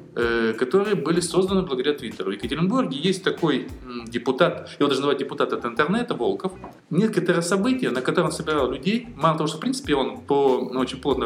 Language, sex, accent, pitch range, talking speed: Russian, male, native, 120-180 Hz, 170 wpm